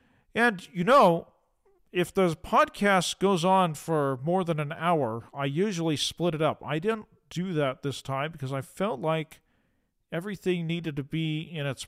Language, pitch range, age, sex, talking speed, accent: English, 150-185 Hz, 40-59, male, 170 wpm, American